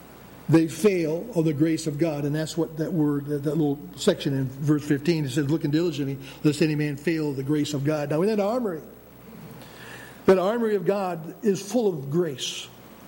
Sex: male